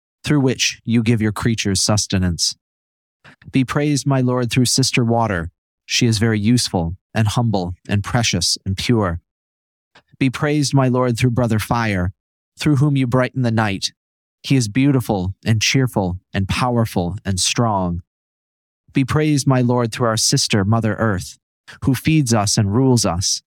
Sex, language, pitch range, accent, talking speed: male, English, 100-125 Hz, American, 155 wpm